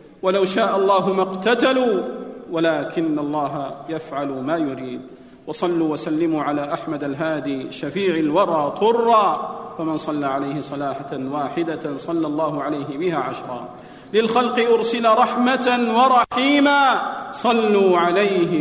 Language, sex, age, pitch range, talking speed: Arabic, male, 40-59, 230-285 Hz, 110 wpm